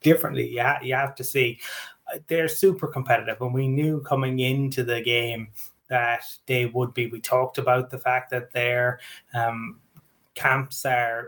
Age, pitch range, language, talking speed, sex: 20-39, 125-135 Hz, English, 160 wpm, male